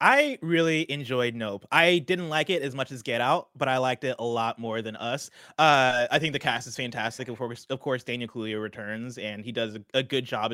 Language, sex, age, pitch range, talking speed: English, male, 20-39, 120-155 Hz, 240 wpm